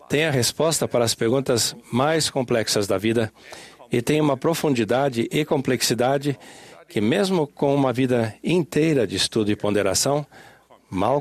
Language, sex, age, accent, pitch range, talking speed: Portuguese, male, 60-79, Brazilian, 110-145 Hz, 145 wpm